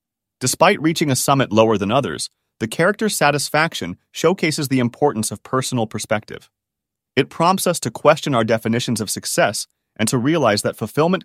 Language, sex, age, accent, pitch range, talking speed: English, male, 30-49, American, 110-145 Hz, 160 wpm